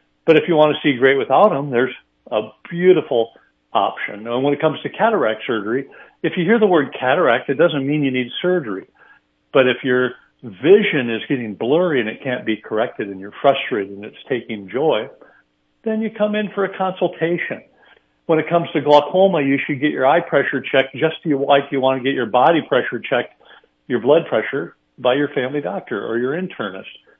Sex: male